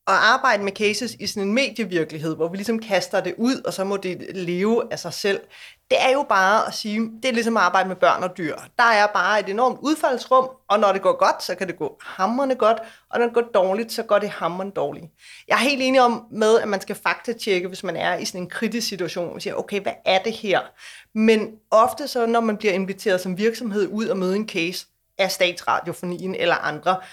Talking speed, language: 235 wpm, Danish